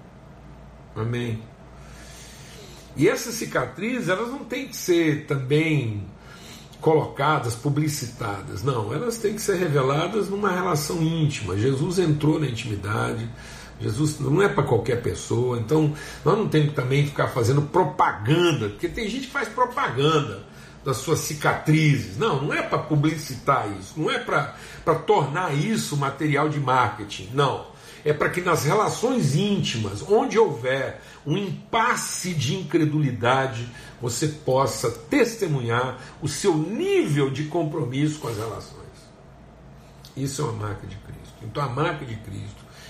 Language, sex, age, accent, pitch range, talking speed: Portuguese, male, 60-79, Brazilian, 120-155 Hz, 140 wpm